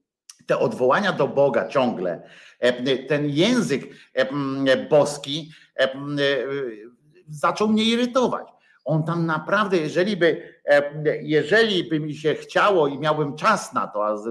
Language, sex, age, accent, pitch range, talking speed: Polish, male, 50-69, native, 130-175 Hz, 115 wpm